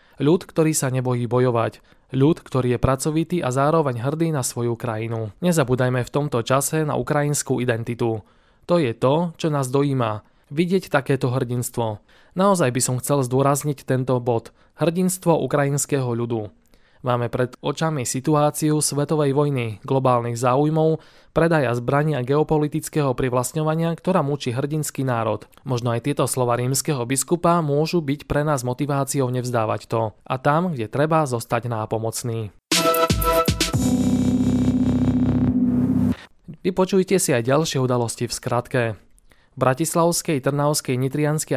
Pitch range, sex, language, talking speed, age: 125-155 Hz, male, Slovak, 125 wpm, 20-39